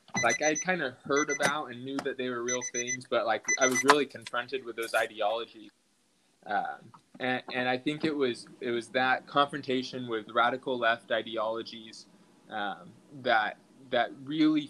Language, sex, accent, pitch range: English, male, American, 115-130 Hz